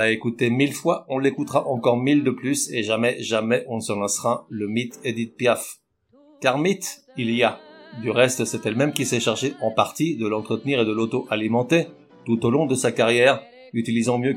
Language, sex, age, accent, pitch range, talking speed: French, male, 50-69, French, 115-145 Hz, 195 wpm